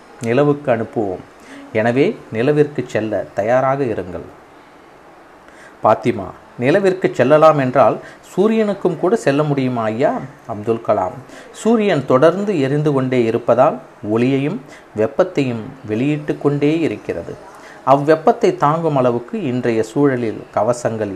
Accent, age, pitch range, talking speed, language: native, 30-49, 120-145 Hz, 95 wpm, Tamil